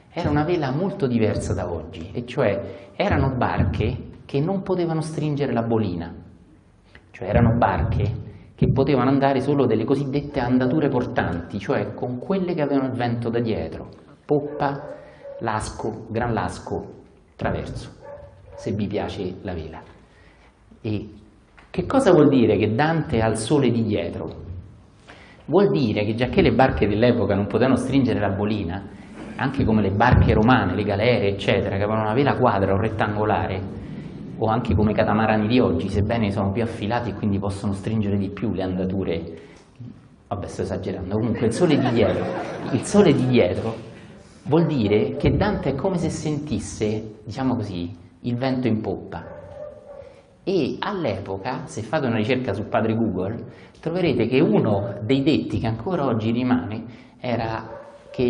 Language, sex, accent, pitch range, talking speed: Italian, male, native, 100-125 Hz, 155 wpm